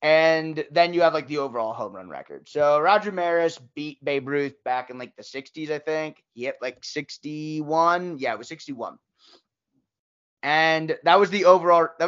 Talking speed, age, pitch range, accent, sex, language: 185 wpm, 20-39, 130-165 Hz, American, male, English